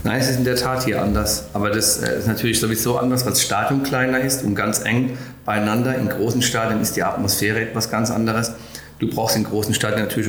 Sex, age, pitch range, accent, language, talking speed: male, 40-59, 105-120 Hz, German, German, 220 wpm